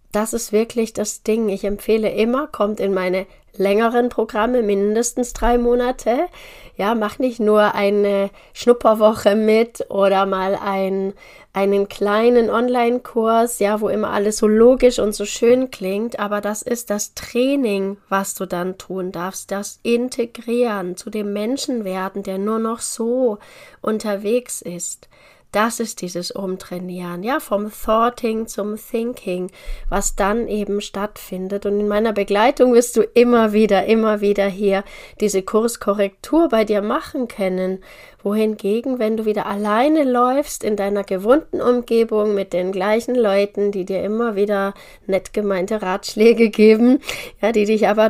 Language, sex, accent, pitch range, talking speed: German, female, German, 200-235 Hz, 145 wpm